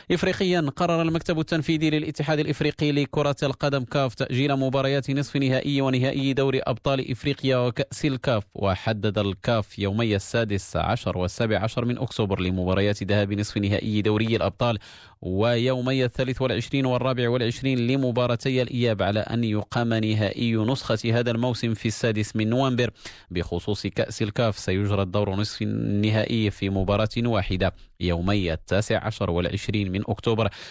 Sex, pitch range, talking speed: male, 95-125 Hz, 135 wpm